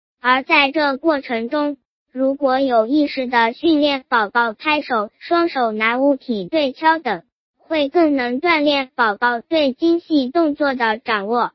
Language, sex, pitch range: Chinese, male, 240-300 Hz